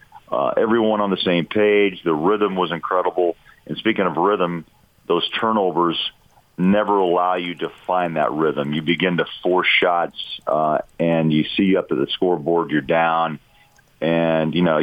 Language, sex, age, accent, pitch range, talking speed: English, male, 50-69, American, 80-95 Hz, 165 wpm